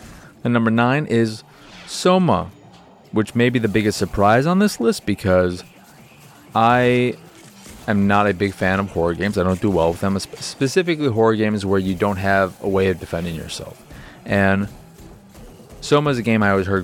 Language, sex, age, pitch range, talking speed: English, male, 20-39, 95-115 Hz, 180 wpm